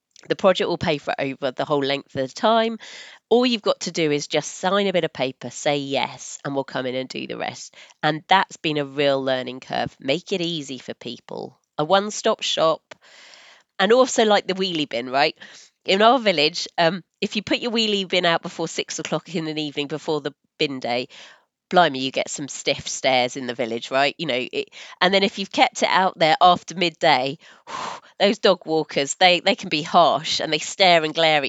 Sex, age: female, 30-49